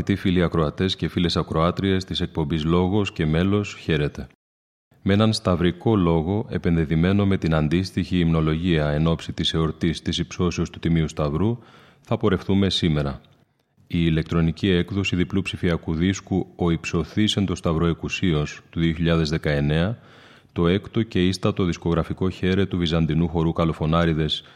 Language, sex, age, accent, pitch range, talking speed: Greek, male, 30-49, Spanish, 85-100 Hz, 135 wpm